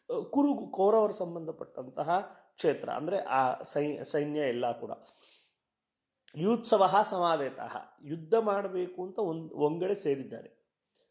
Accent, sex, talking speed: native, male, 90 wpm